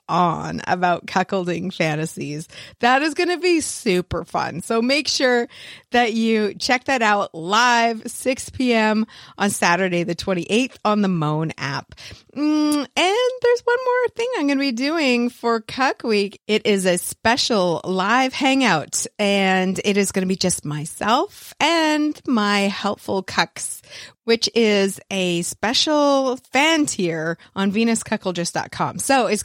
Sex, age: female, 30-49